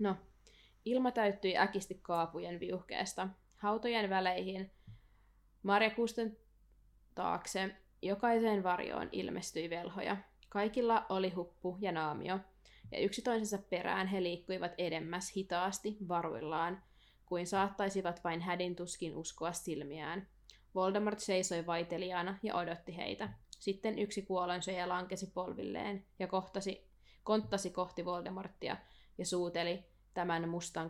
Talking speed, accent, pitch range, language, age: 105 wpm, native, 170-190 Hz, Finnish, 20-39